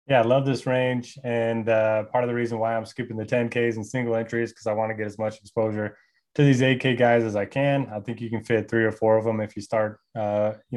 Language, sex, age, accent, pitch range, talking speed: English, male, 20-39, American, 110-125 Hz, 280 wpm